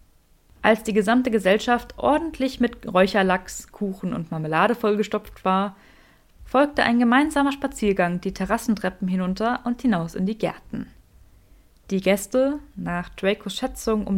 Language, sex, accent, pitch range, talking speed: German, female, German, 190-250 Hz, 125 wpm